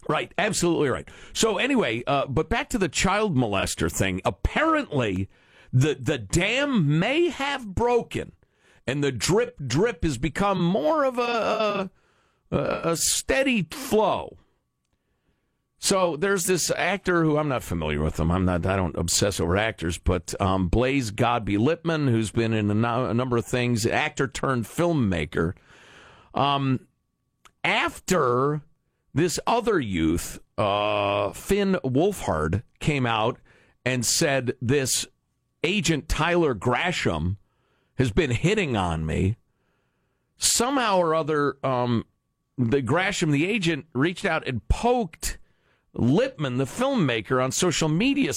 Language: English